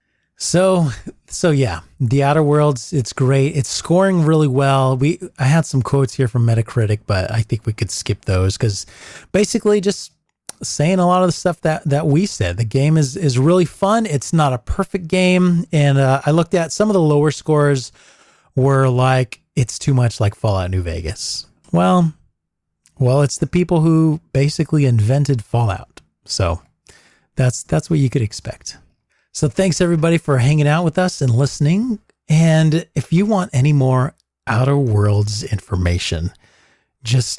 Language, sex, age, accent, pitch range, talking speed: English, male, 30-49, American, 125-175 Hz, 170 wpm